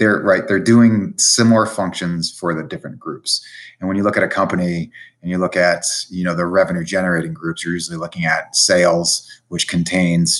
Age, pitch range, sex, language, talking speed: 30-49, 85-100 Hz, male, English, 195 wpm